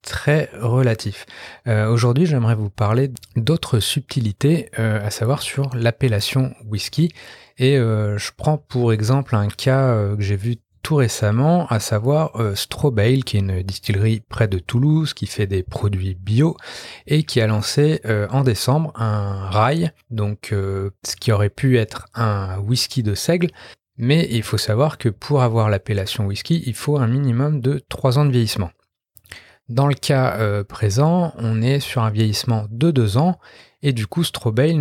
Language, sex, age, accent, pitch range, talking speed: French, male, 30-49, French, 105-140 Hz, 170 wpm